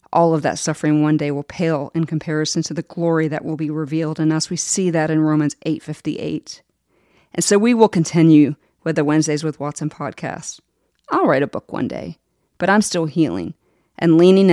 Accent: American